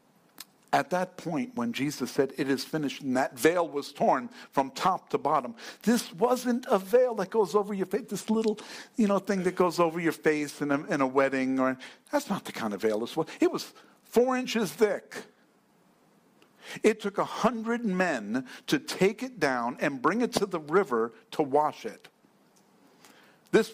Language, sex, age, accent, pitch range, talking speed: English, male, 60-79, American, 135-215 Hz, 185 wpm